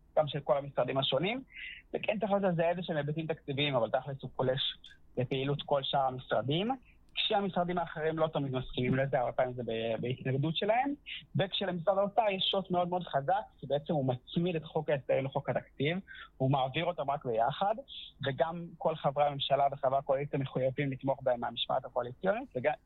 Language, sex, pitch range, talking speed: Hebrew, male, 135-165 Hz, 165 wpm